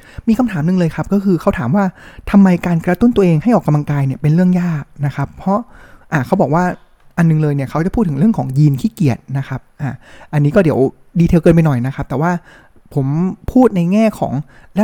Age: 20-39